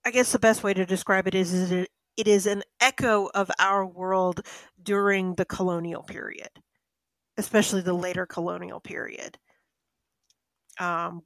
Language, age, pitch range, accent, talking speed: English, 30-49, 180-205 Hz, American, 150 wpm